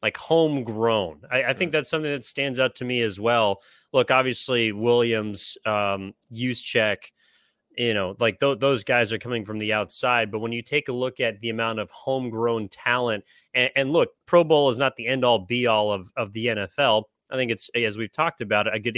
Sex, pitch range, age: male, 110-130 Hz, 30-49